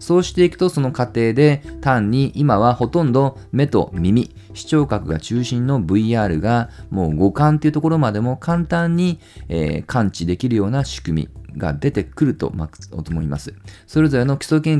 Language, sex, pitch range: Japanese, male, 90-145 Hz